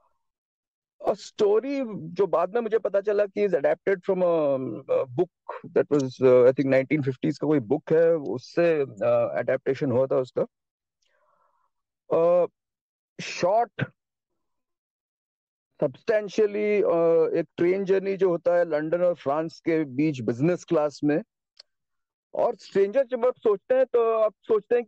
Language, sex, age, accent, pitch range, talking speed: Hindi, male, 50-69, native, 165-245 Hz, 110 wpm